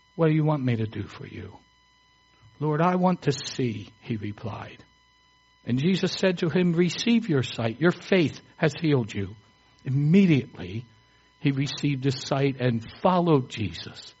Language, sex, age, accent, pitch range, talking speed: English, male, 60-79, American, 120-155 Hz, 155 wpm